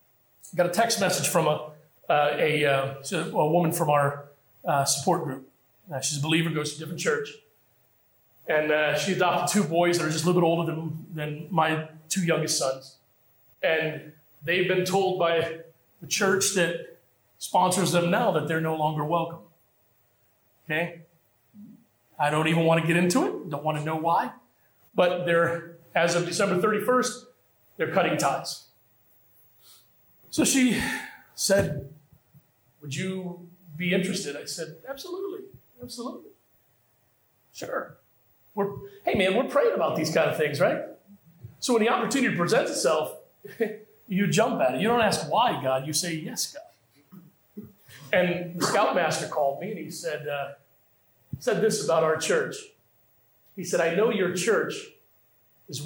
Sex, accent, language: male, American, English